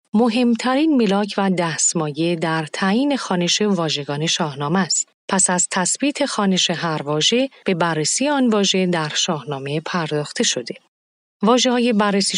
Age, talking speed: 40-59, 130 wpm